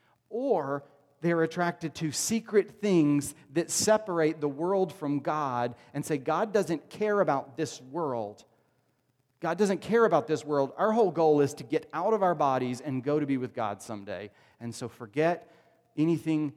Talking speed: 170 wpm